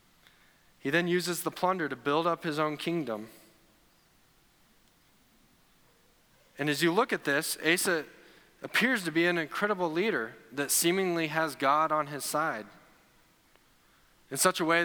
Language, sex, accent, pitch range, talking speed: English, male, American, 130-160 Hz, 140 wpm